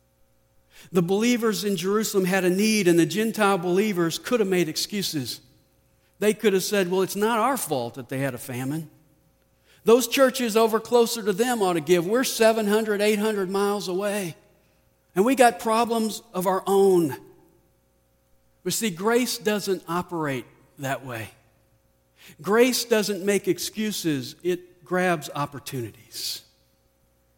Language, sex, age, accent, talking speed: English, male, 50-69, American, 140 wpm